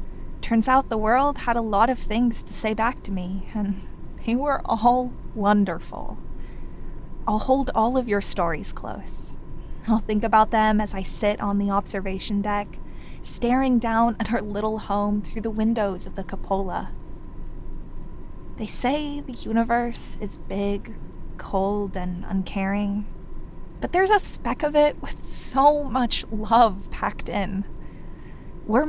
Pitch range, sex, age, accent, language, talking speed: 200-245 Hz, female, 10-29, American, English, 150 wpm